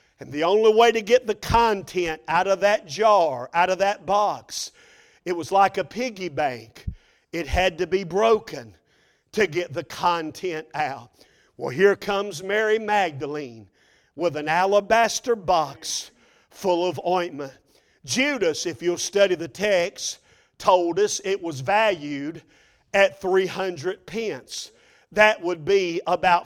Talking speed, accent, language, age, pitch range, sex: 140 wpm, American, English, 50-69, 180-235 Hz, male